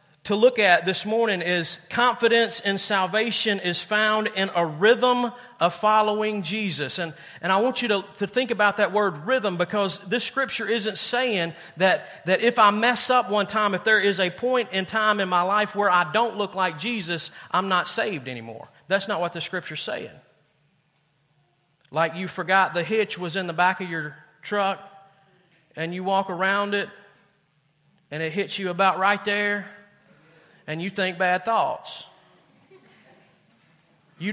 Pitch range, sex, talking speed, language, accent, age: 160-210 Hz, male, 170 wpm, English, American, 40-59